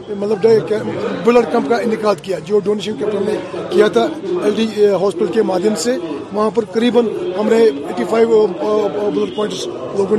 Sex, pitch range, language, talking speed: male, 225-255 Hz, Urdu, 145 wpm